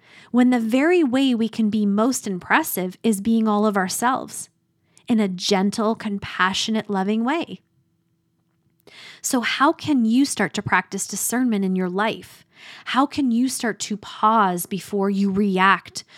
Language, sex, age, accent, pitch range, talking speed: English, female, 20-39, American, 195-250 Hz, 150 wpm